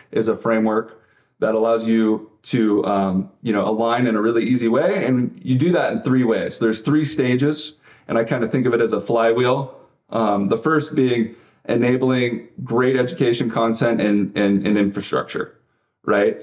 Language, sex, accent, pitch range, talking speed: English, male, American, 105-130 Hz, 185 wpm